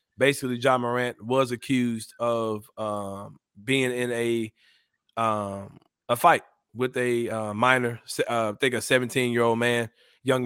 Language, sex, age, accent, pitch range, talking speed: English, male, 20-39, American, 110-125 Hz, 150 wpm